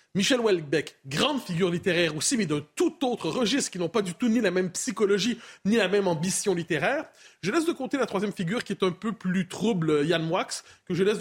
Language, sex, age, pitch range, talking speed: French, male, 30-49, 180-275 Hz, 230 wpm